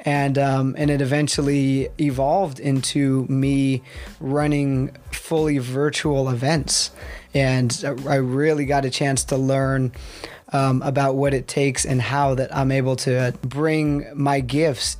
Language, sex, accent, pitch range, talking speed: English, male, American, 130-150 Hz, 135 wpm